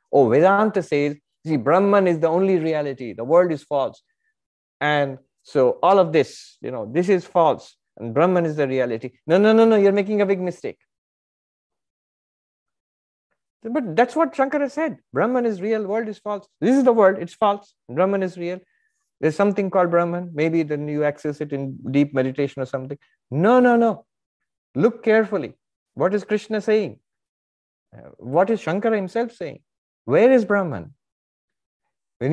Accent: Indian